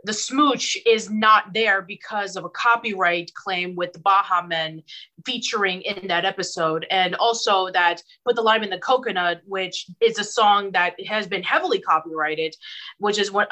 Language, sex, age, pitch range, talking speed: English, female, 20-39, 170-210 Hz, 170 wpm